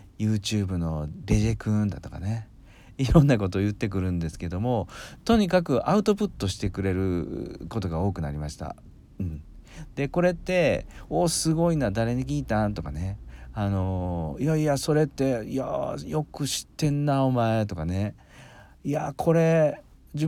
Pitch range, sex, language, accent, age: 90-145 Hz, male, Japanese, native, 40-59